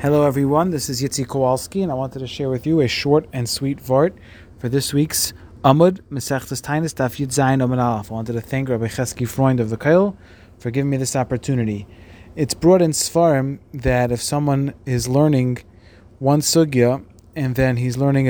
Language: English